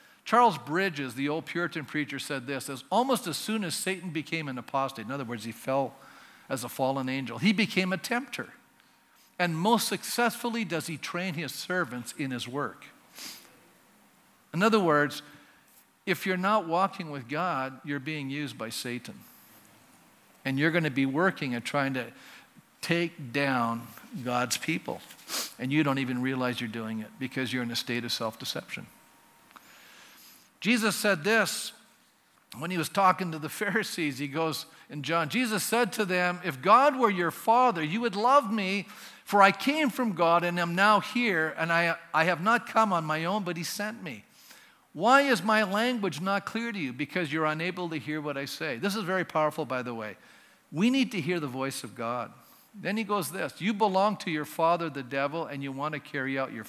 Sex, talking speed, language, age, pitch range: male, 190 wpm, English, 50-69, 135-200 Hz